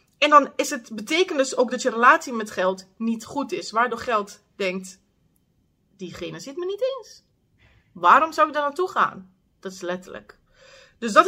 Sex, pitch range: female, 210-295 Hz